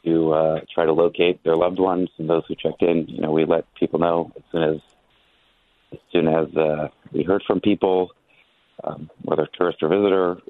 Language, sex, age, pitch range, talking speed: English, male, 30-49, 80-90 Hz, 200 wpm